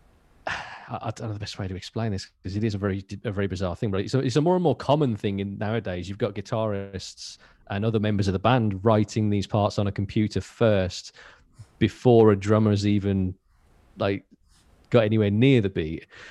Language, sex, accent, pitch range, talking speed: English, male, British, 90-110 Hz, 200 wpm